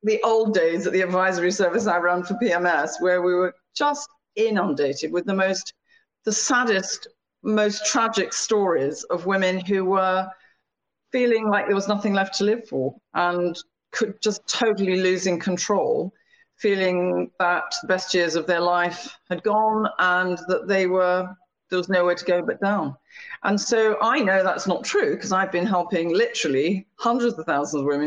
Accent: British